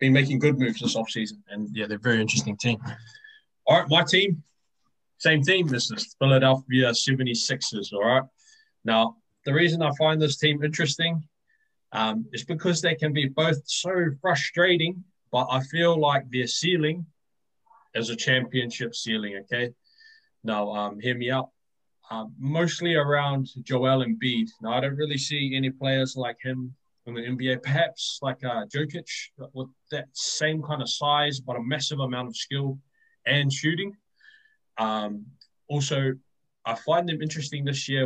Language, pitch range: English, 120-155 Hz